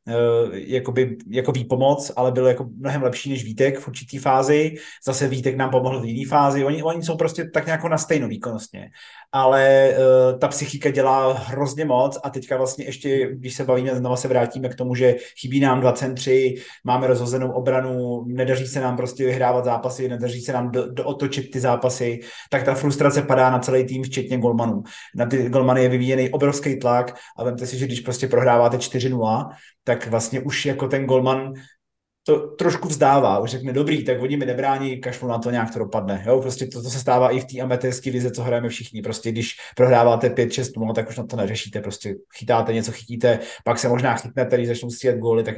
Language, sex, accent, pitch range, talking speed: Czech, male, native, 120-135 Hz, 195 wpm